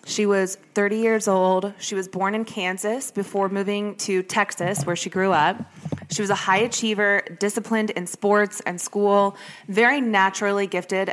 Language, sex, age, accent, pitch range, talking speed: English, female, 20-39, American, 180-210 Hz, 165 wpm